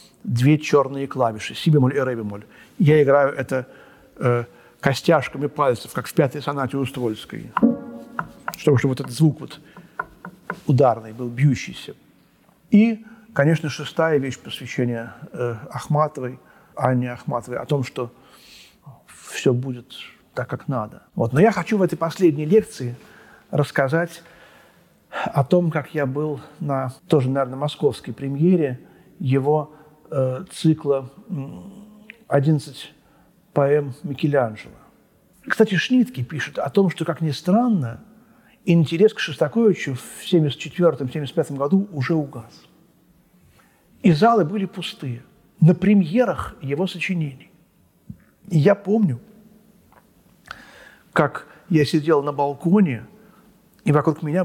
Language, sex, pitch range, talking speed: Russian, male, 130-180 Hz, 115 wpm